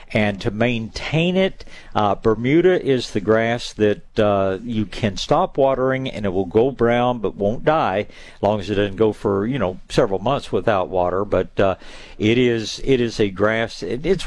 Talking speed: 195 wpm